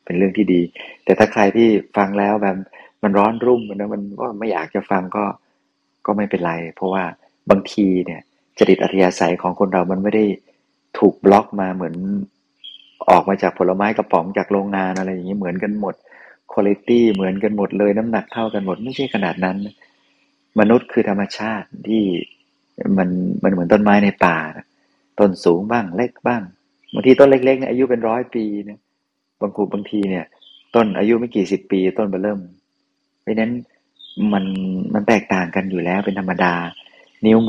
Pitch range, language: 95-110 Hz, Thai